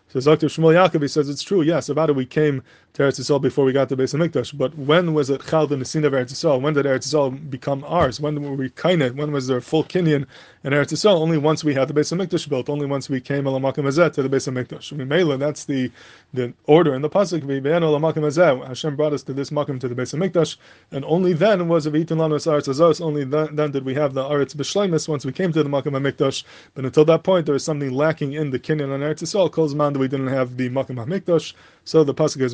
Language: English